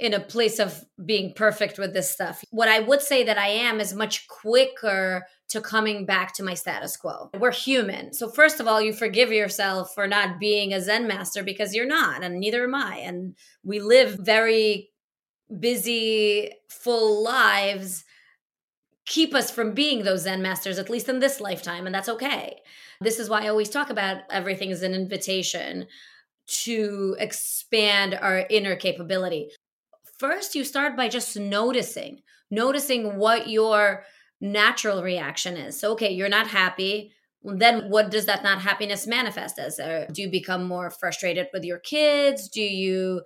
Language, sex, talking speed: English, female, 170 wpm